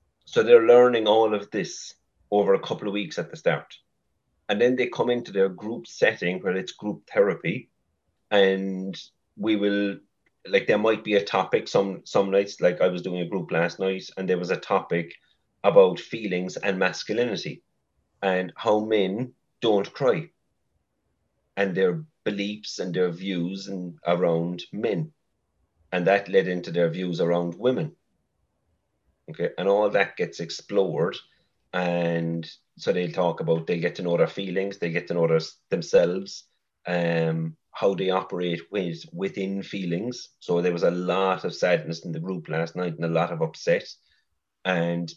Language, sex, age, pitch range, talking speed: English, male, 30-49, 85-100 Hz, 165 wpm